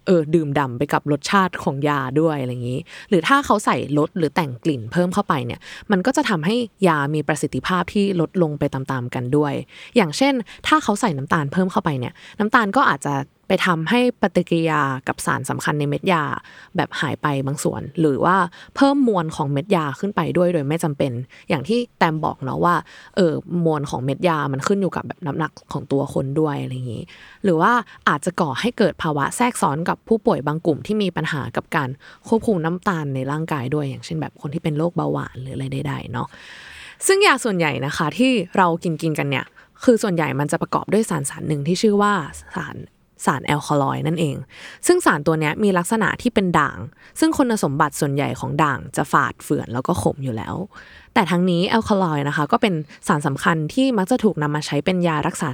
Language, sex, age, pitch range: Thai, female, 20-39, 145-200 Hz